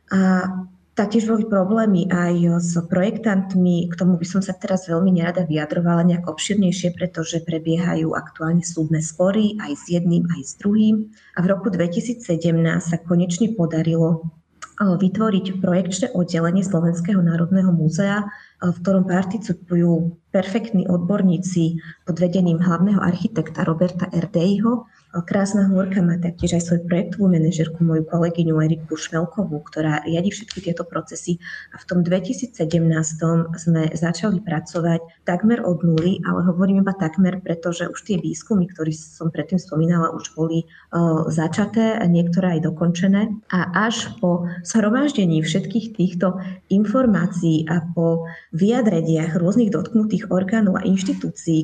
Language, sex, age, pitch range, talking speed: Slovak, female, 20-39, 165-195 Hz, 135 wpm